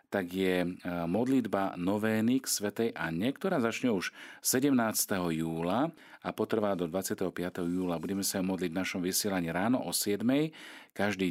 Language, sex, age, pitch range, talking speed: Slovak, male, 40-59, 85-110 Hz, 145 wpm